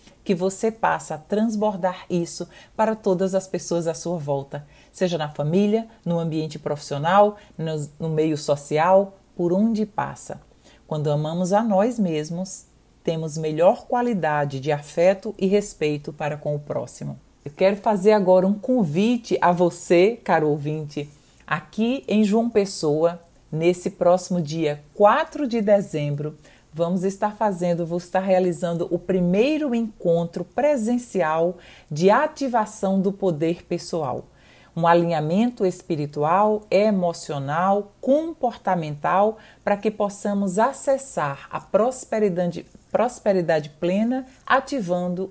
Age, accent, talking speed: 40-59, Brazilian, 120 wpm